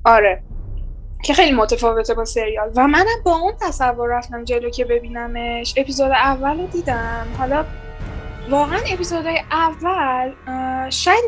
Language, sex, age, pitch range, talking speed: Persian, female, 10-29, 225-295 Hz, 130 wpm